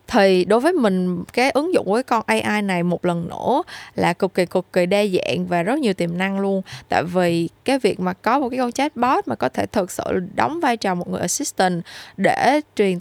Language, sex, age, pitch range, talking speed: Vietnamese, female, 10-29, 190-260 Hz, 235 wpm